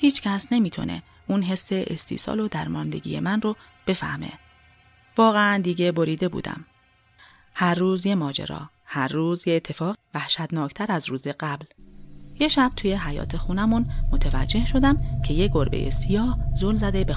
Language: Persian